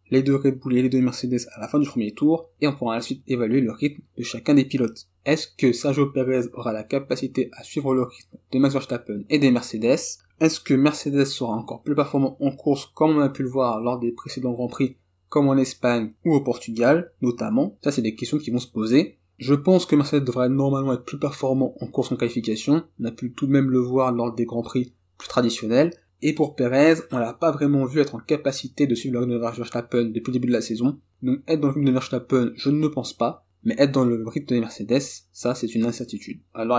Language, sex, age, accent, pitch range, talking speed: French, male, 20-39, French, 120-140 Hz, 250 wpm